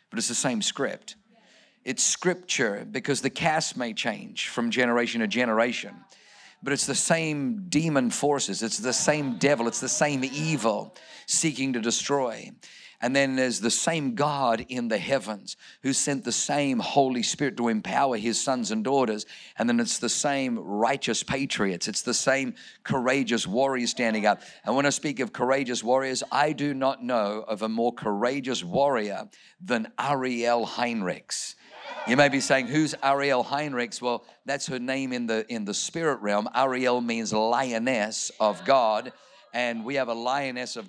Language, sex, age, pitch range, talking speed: English, male, 50-69, 120-145 Hz, 165 wpm